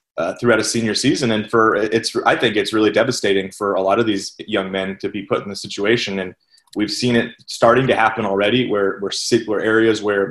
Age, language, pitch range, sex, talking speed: 30-49, English, 100-120 Hz, male, 220 wpm